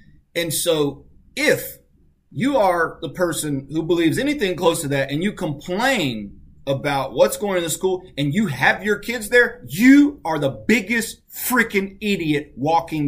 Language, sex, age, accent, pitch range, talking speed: English, male, 30-49, American, 145-215 Hz, 165 wpm